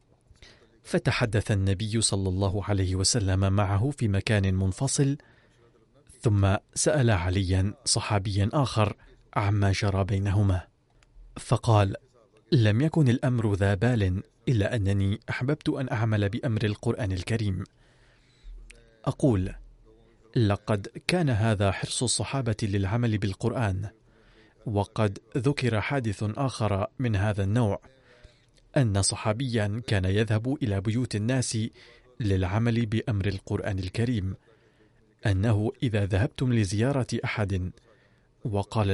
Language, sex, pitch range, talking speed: Arabic, male, 100-125 Hz, 100 wpm